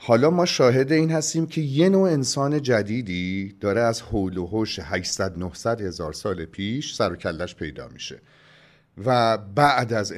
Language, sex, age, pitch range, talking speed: Persian, male, 40-59, 100-145 Hz, 145 wpm